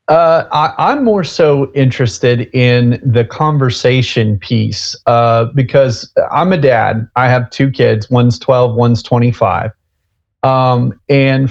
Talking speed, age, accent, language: 130 wpm, 40-59, American, English